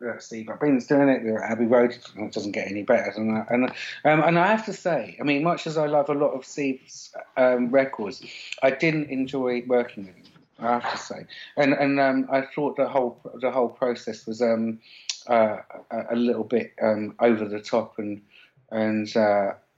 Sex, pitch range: male, 110-130 Hz